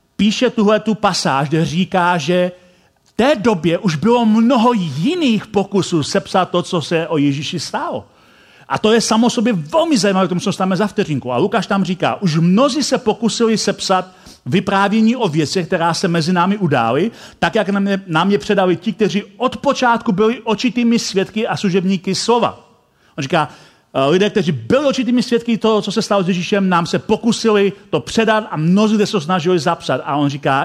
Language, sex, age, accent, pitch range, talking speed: Czech, male, 40-59, native, 170-220 Hz, 175 wpm